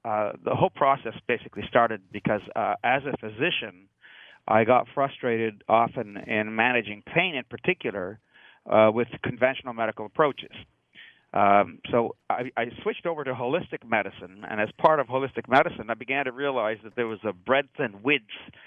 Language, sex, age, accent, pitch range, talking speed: English, male, 50-69, American, 110-130 Hz, 165 wpm